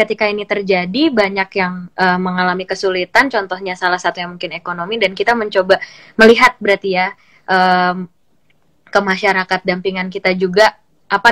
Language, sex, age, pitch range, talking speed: Indonesian, female, 20-39, 175-200 Hz, 145 wpm